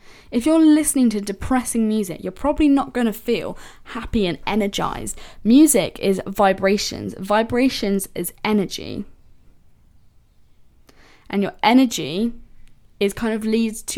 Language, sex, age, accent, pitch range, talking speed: English, female, 10-29, British, 185-235 Hz, 125 wpm